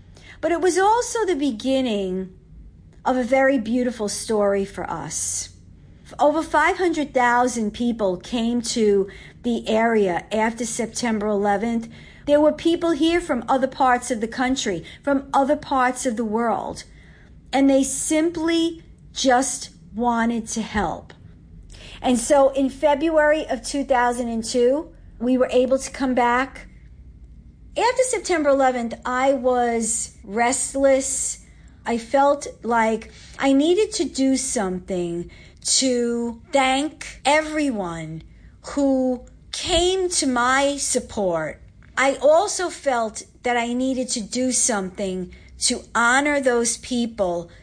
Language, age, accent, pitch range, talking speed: English, 50-69, American, 220-280 Hz, 115 wpm